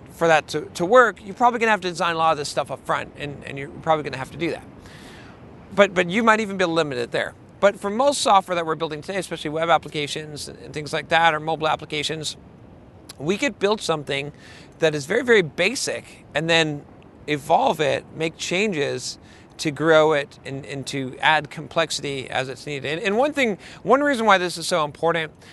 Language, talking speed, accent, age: English, 215 wpm, American, 40-59